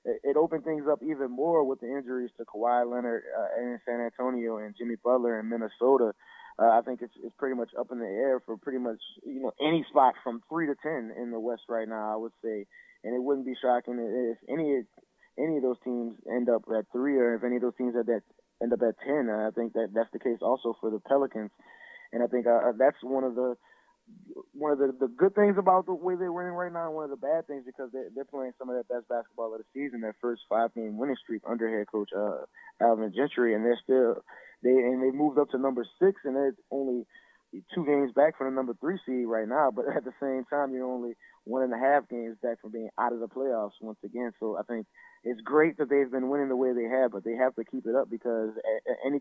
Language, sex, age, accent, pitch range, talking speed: English, male, 20-39, American, 115-140 Hz, 250 wpm